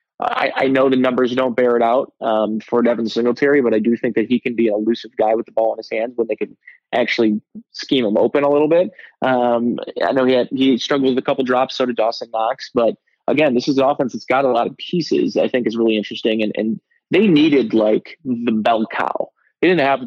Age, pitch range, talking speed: 20-39, 115-140 Hz, 250 wpm